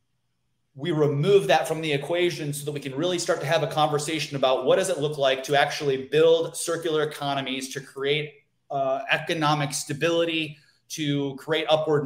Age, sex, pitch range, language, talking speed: 30-49, male, 135-155 Hz, English, 175 wpm